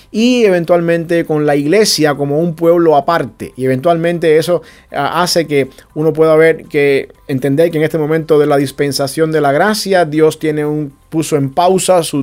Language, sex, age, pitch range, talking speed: English, male, 30-49, 140-170 Hz, 175 wpm